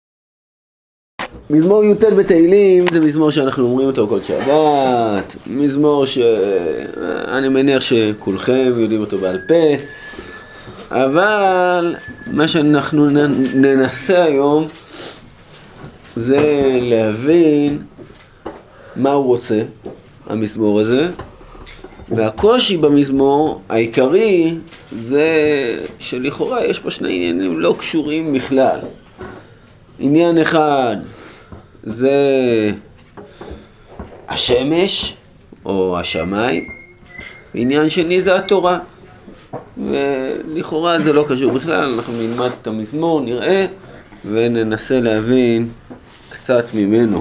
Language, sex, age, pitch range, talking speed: Hebrew, male, 30-49, 115-160 Hz, 85 wpm